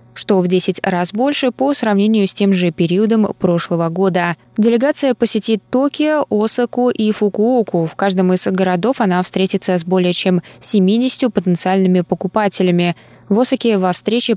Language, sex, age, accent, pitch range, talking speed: Russian, female, 20-39, native, 180-225 Hz, 145 wpm